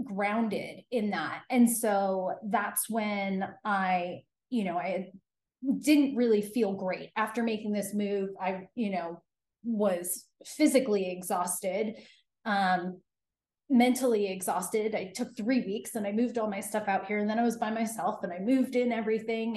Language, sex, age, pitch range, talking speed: English, female, 30-49, 190-230 Hz, 155 wpm